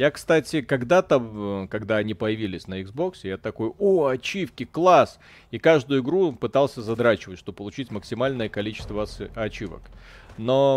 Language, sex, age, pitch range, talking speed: Russian, male, 30-49, 110-145 Hz, 135 wpm